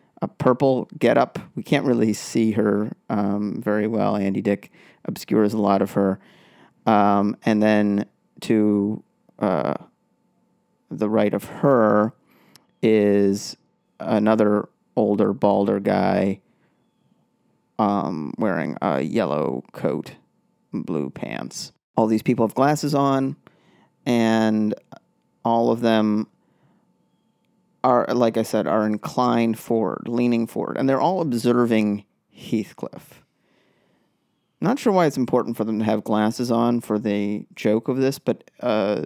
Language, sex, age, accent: English, male, 30-49, American